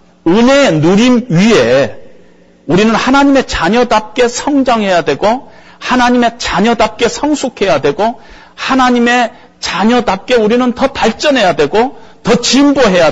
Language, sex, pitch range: Korean, male, 175-245 Hz